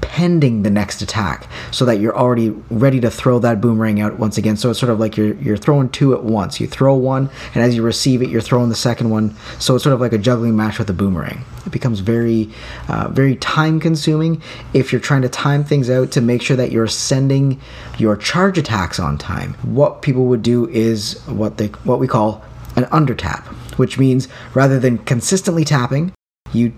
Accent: American